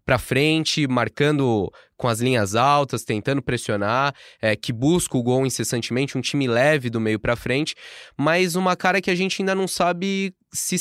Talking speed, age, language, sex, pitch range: 180 wpm, 20-39, Portuguese, male, 115-150 Hz